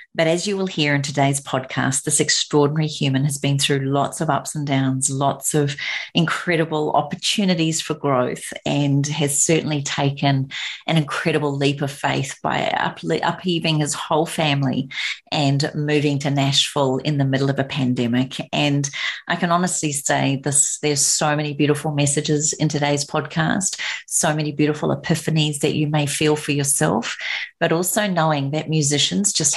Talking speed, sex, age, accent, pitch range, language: 160 wpm, female, 30-49, Australian, 140-155 Hz, English